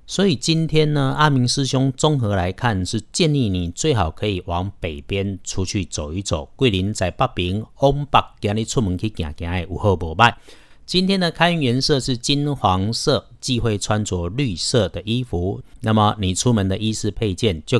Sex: male